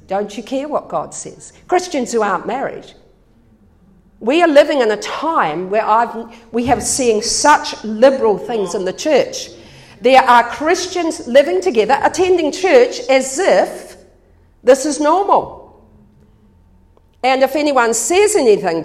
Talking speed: 135 wpm